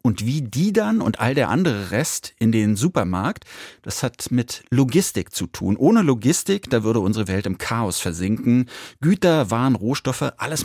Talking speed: 175 wpm